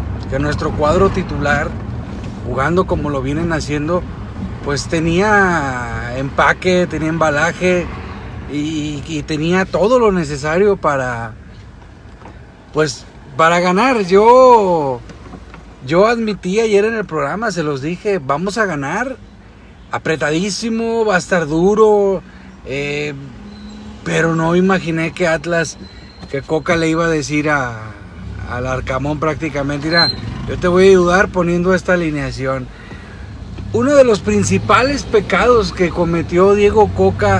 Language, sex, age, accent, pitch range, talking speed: Spanish, male, 40-59, Mexican, 120-190 Hz, 120 wpm